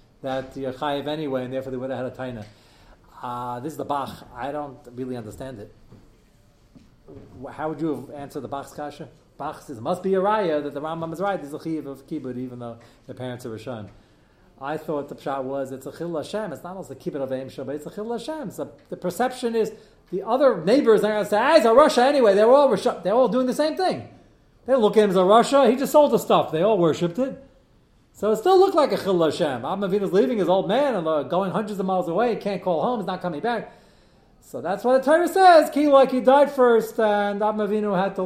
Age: 40-59